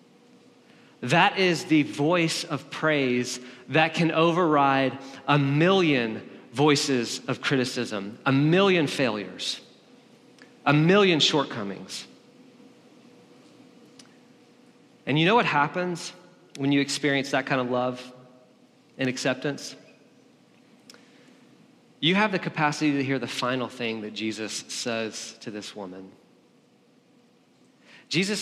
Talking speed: 105 wpm